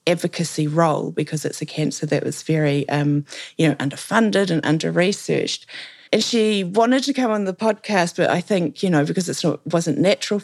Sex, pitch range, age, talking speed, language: female, 150-190 Hz, 30-49, 185 wpm, English